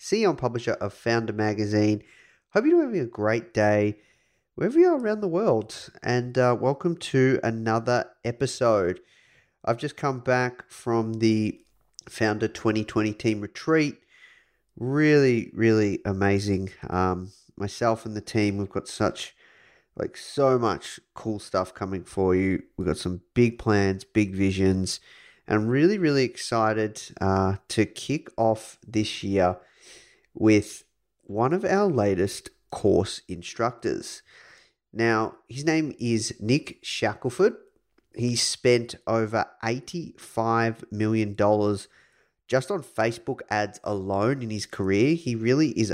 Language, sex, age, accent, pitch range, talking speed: English, male, 30-49, Australian, 105-125 Hz, 130 wpm